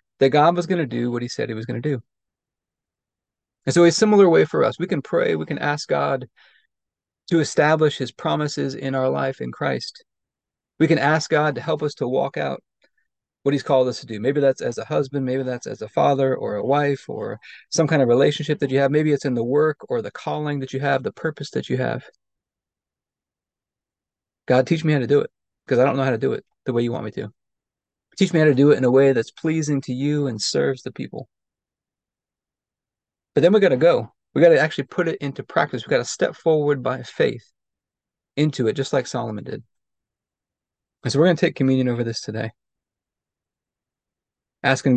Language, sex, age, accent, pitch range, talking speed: English, male, 30-49, American, 125-150 Hz, 220 wpm